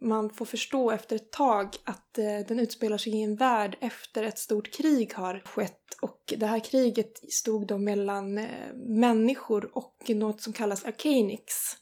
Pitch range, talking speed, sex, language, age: 210-240 Hz, 165 wpm, female, Swedish, 20-39